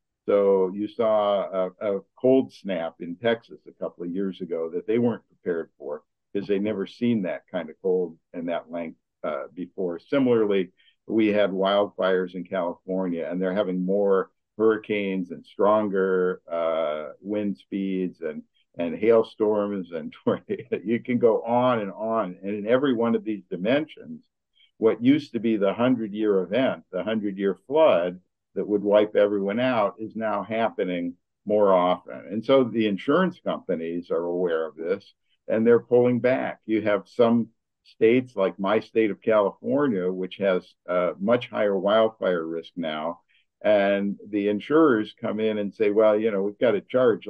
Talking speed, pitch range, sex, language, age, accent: 165 wpm, 95-115 Hz, male, English, 50-69, American